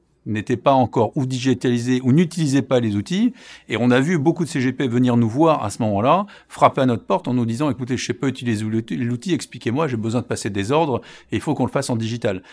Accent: French